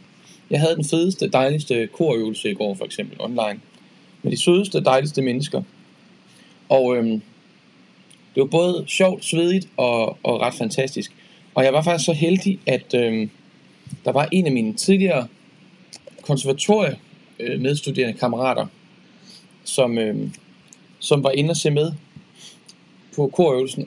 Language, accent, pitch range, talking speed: Danish, native, 130-180 Hz, 125 wpm